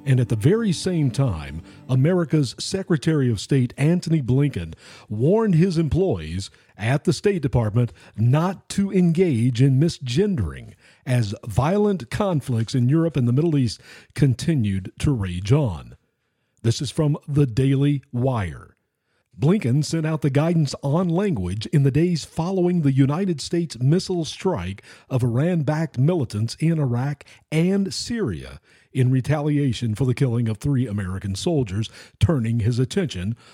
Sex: male